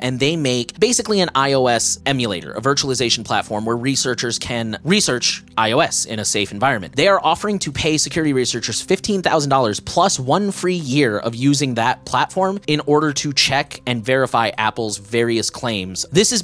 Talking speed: 170 wpm